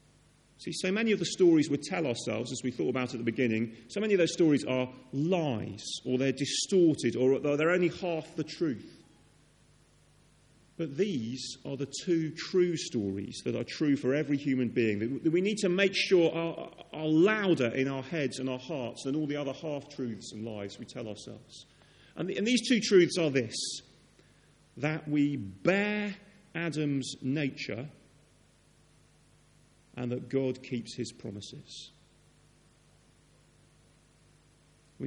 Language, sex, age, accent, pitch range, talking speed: English, male, 40-59, British, 125-165 Hz, 155 wpm